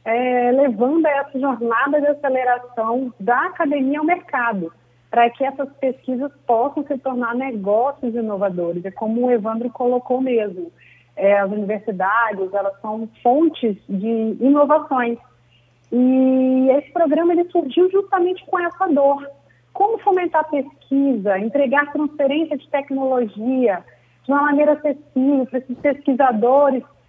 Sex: female